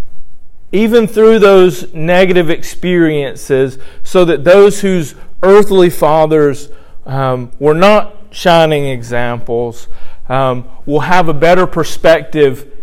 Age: 40-59